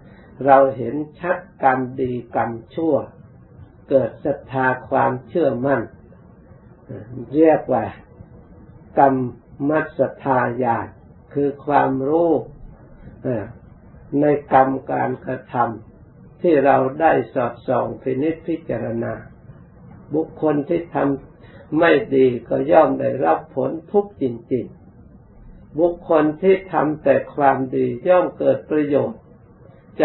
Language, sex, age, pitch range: Thai, male, 60-79, 125-150 Hz